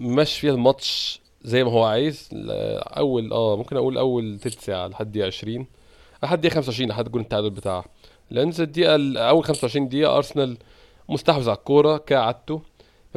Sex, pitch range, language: male, 110-140 Hz, Arabic